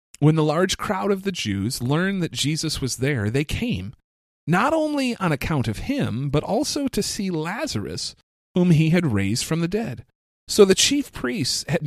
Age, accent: 30-49, American